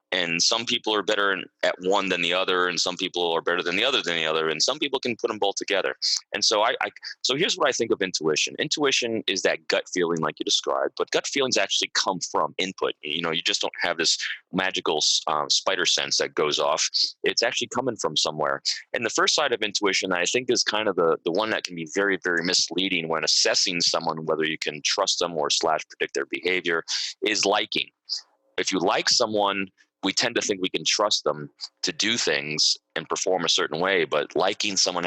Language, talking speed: English, 225 wpm